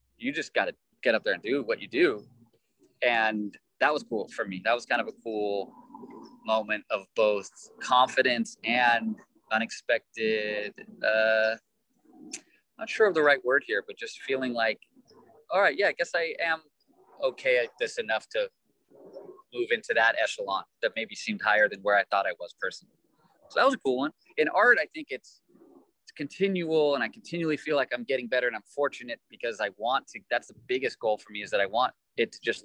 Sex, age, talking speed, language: male, 20-39, 200 wpm, English